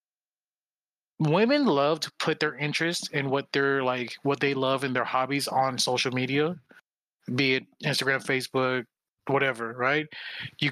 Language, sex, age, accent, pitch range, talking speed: English, male, 20-39, American, 135-165 Hz, 150 wpm